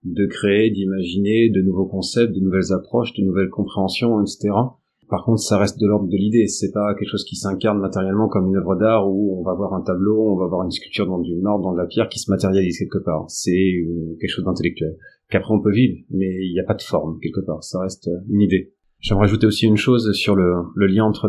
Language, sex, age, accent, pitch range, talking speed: French, male, 30-49, French, 90-105 Hz, 245 wpm